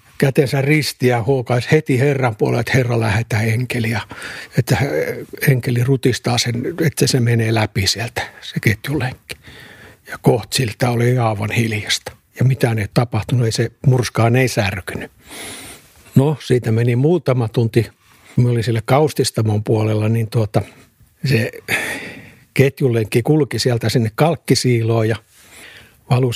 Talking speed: 125 wpm